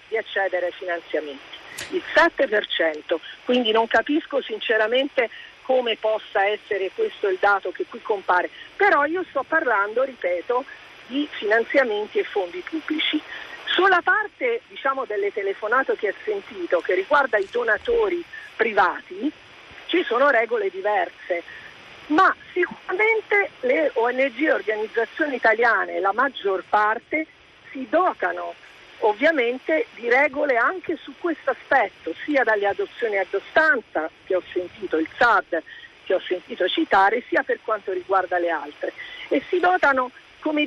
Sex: female